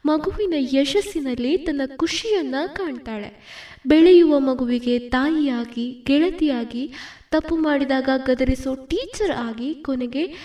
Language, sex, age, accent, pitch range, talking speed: Kannada, female, 20-39, native, 255-335 Hz, 85 wpm